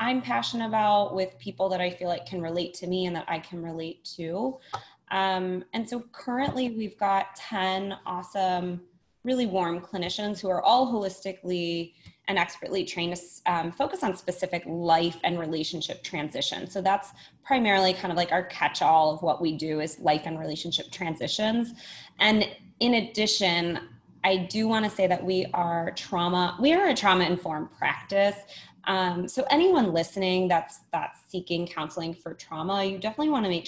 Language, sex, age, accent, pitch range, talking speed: English, female, 20-39, American, 170-205 Hz, 170 wpm